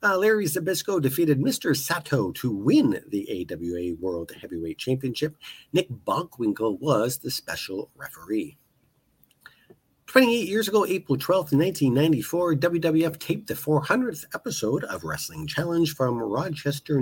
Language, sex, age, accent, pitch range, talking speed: English, male, 50-69, American, 130-180 Hz, 125 wpm